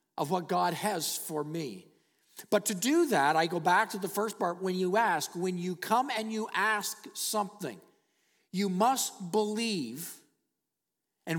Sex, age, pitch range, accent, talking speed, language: male, 50-69, 175-230 Hz, American, 165 wpm, English